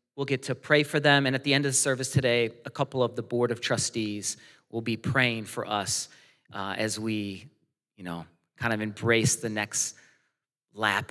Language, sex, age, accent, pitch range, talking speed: English, male, 40-59, American, 120-150 Hz, 200 wpm